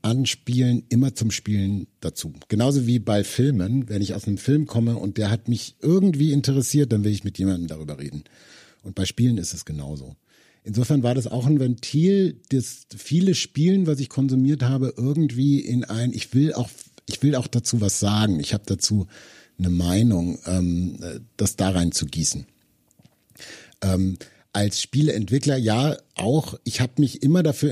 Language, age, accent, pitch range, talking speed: German, 50-69, German, 105-135 Hz, 170 wpm